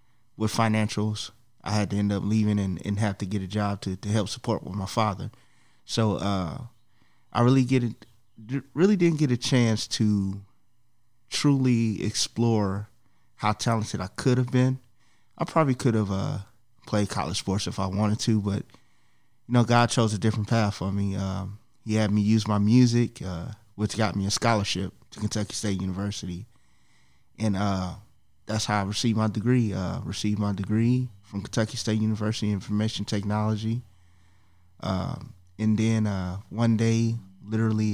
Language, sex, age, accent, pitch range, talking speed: English, male, 20-39, American, 100-115 Hz, 170 wpm